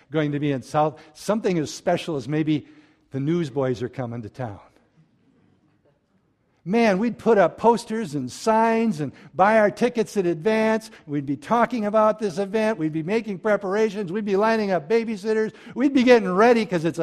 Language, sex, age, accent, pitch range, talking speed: English, male, 60-79, American, 125-175 Hz, 175 wpm